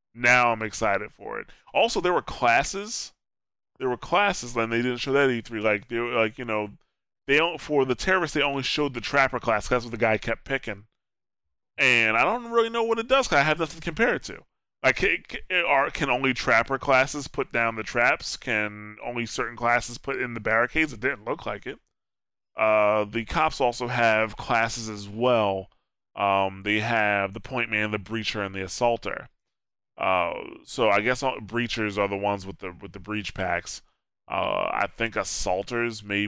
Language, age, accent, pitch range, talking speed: English, 20-39, American, 100-120 Hz, 200 wpm